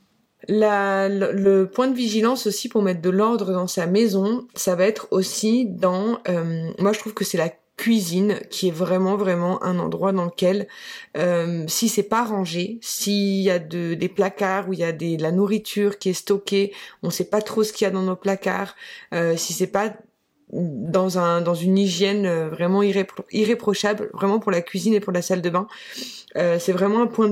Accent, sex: French, female